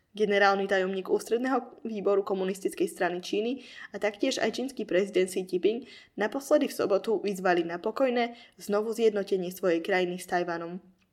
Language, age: Slovak, 10-29